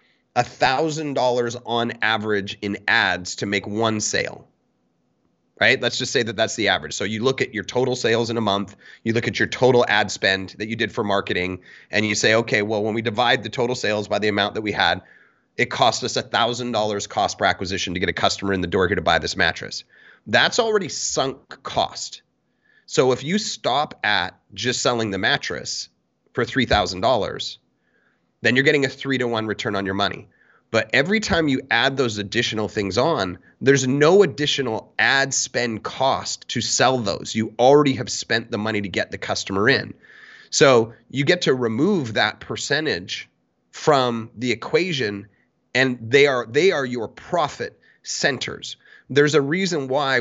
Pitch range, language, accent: 105-135 Hz, English, American